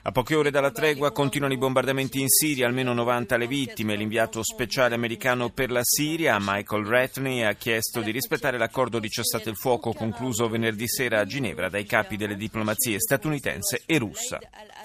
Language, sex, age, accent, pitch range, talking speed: Italian, male, 30-49, native, 105-130 Hz, 175 wpm